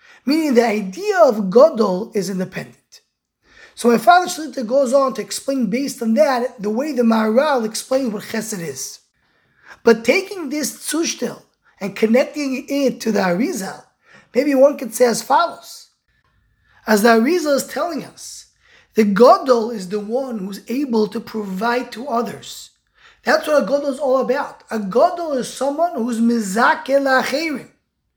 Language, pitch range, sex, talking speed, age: English, 230-300 Hz, male, 160 wpm, 20-39